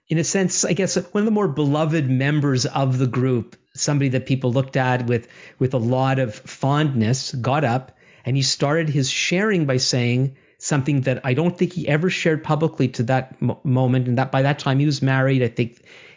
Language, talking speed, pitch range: English, 210 wpm, 125-145 Hz